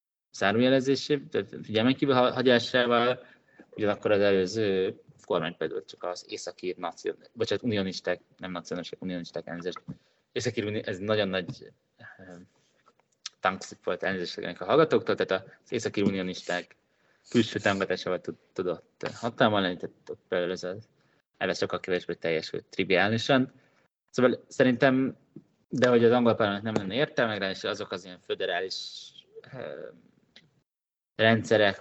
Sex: male